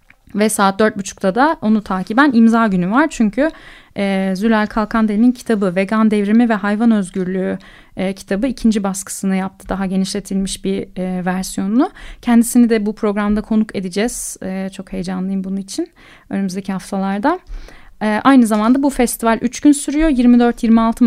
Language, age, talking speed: Turkish, 30-49, 150 wpm